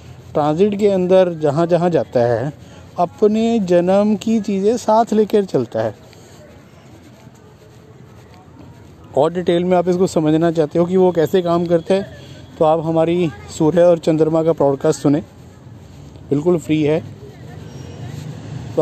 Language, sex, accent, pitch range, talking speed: Hindi, male, native, 120-165 Hz, 135 wpm